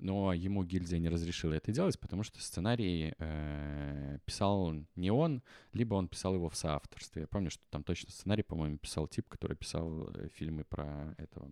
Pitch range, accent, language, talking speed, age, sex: 80-100 Hz, native, Russian, 180 wpm, 20-39, male